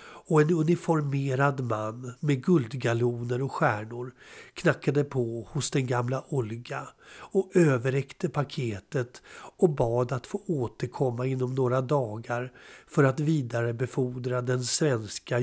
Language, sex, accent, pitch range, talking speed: Swedish, male, native, 120-145 Hz, 115 wpm